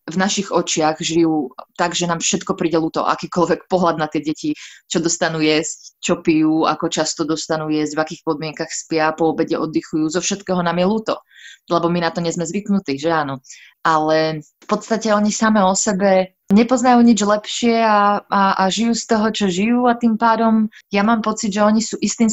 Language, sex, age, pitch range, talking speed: Slovak, female, 20-39, 165-200 Hz, 195 wpm